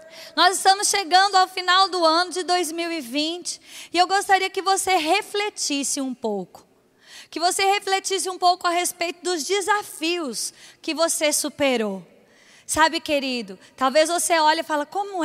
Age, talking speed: 20-39, 145 wpm